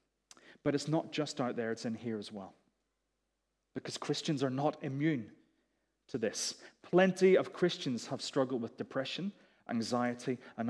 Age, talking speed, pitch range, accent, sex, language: 30-49, 150 wpm, 125-175 Hz, British, male, English